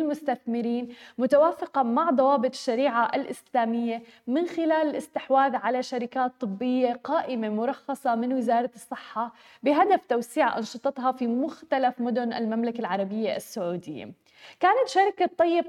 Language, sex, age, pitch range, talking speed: Arabic, female, 20-39, 240-285 Hz, 110 wpm